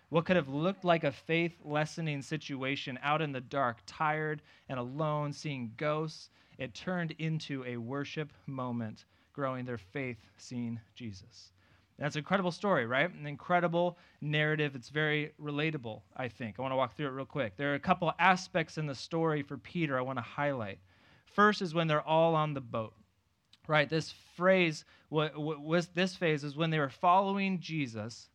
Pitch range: 130-165 Hz